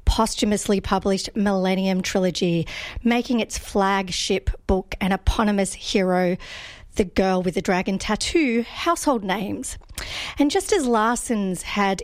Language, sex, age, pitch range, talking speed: English, female, 40-59, 195-240 Hz, 120 wpm